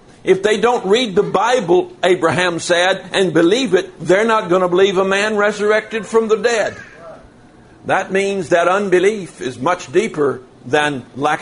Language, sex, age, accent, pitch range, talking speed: English, male, 60-79, American, 180-225 Hz, 165 wpm